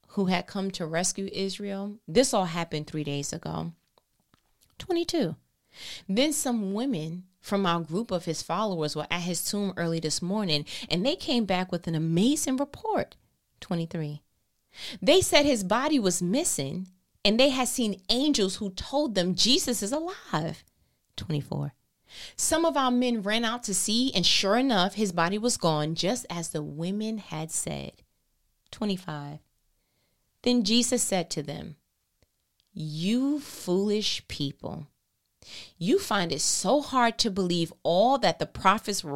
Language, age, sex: English, 30-49, female